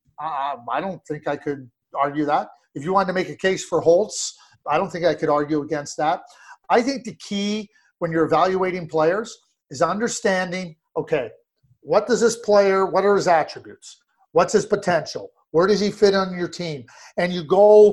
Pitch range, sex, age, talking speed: 170-215 Hz, male, 40-59, 185 wpm